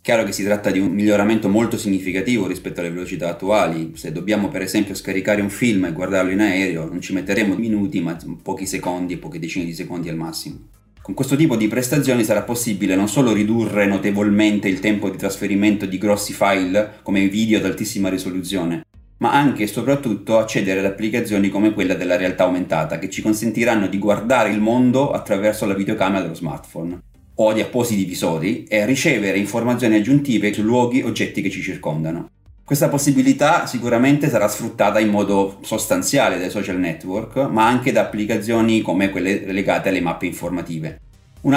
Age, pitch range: 30-49, 95-110 Hz